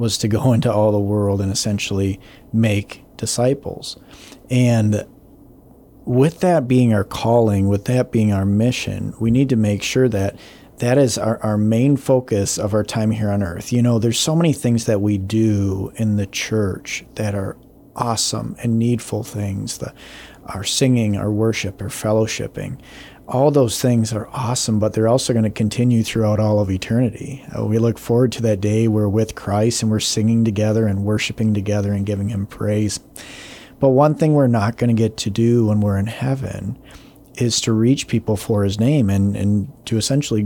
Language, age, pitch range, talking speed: English, 40-59, 105-125 Hz, 185 wpm